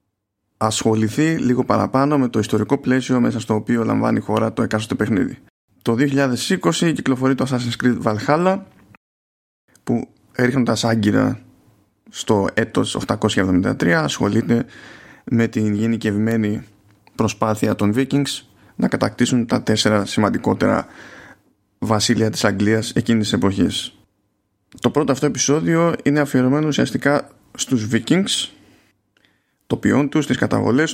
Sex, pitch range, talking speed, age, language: male, 105-135 Hz, 115 wpm, 20-39, Greek